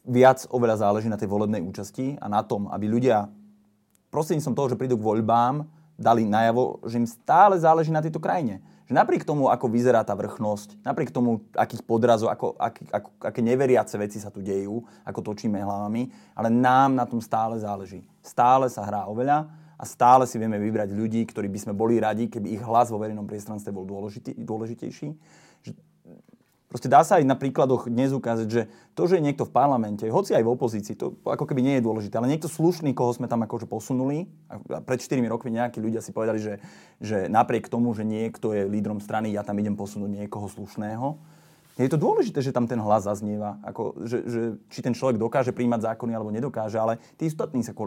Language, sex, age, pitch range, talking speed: Slovak, male, 30-49, 105-125 Hz, 200 wpm